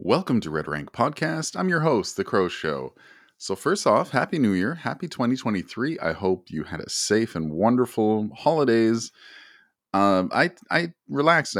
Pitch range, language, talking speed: 100-130 Hz, English, 170 wpm